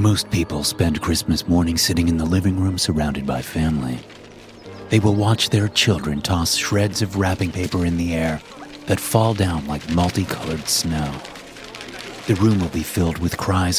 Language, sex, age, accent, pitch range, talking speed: English, male, 30-49, American, 80-105 Hz, 170 wpm